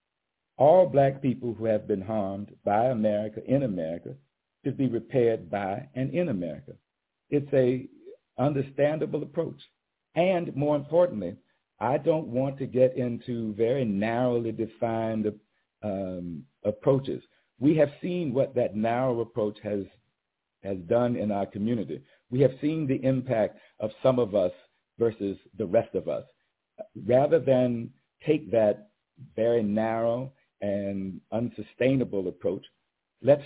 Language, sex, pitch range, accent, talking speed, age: English, male, 110-135 Hz, American, 130 wpm, 50-69